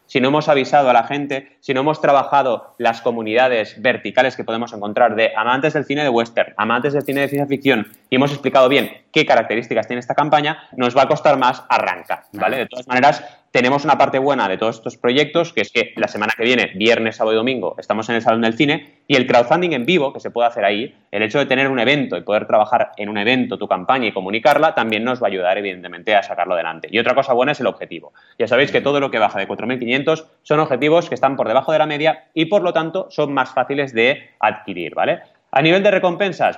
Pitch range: 105-145 Hz